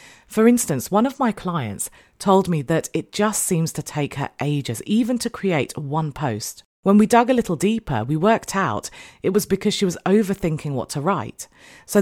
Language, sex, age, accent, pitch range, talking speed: English, female, 40-59, British, 140-205 Hz, 200 wpm